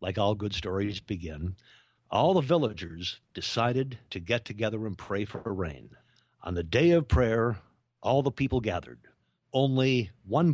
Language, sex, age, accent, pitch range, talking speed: English, male, 50-69, American, 110-155 Hz, 155 wpm